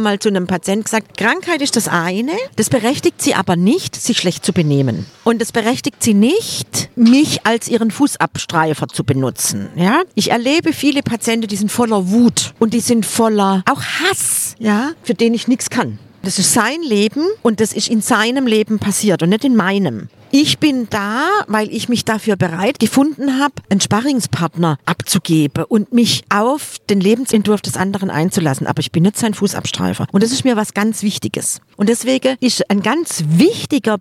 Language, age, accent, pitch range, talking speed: German, 50-69, German, 185-240 Hz, 185 wpm